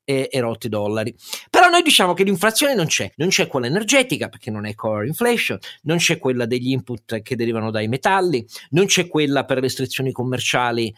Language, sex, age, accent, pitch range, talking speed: Italian, male, 40-59, native, 120-175 Hz, 195 wpm